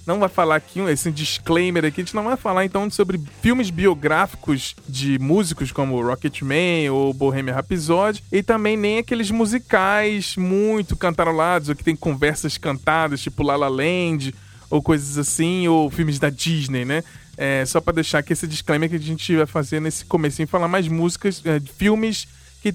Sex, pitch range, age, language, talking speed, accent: male, 150-190 Hz, 20-39, Portuguese, 180 wpm, Brazilian